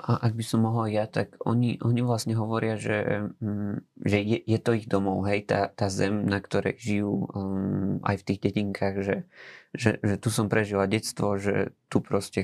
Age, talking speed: 20-39, 200 wpm